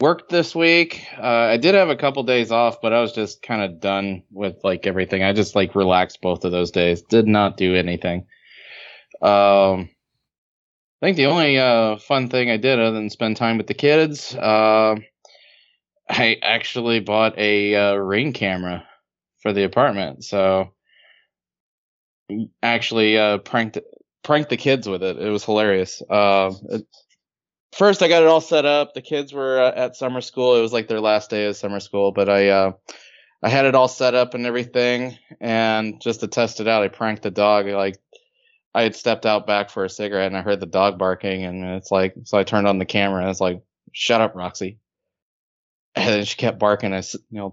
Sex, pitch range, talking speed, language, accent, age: male, 100-120 Hz, 200 wpm, English, American, 20-39